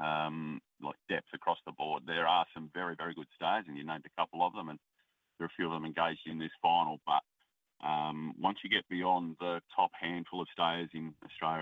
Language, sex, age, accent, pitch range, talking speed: English, male, 30-49, Australian, 75-85 Hz, 225 wpm